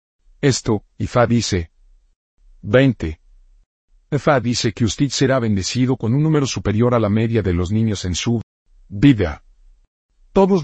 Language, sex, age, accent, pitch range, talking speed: Spanish, male, 50-69, Mexican, 90-135 Hz, 135 wpm